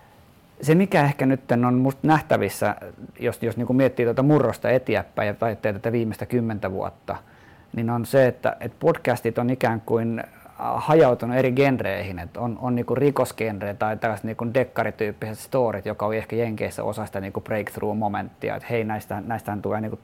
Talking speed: 160 wpm